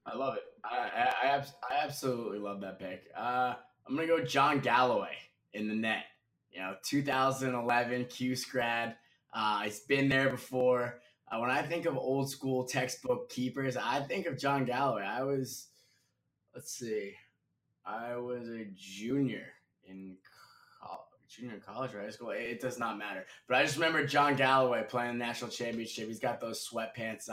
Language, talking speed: English, 165 wpm